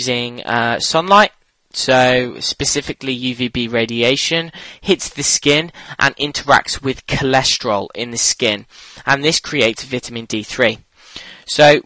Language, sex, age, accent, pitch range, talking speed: English, male, 10-29, British, 125-155 Hz, 115 wpm